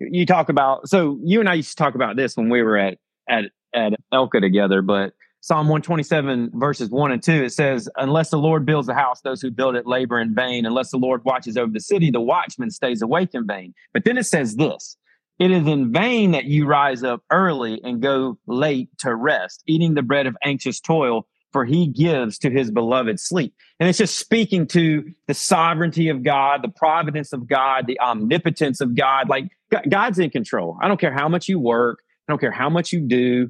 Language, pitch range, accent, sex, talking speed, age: English, 130-170 Hz, American, male, 220 wpm, 30-49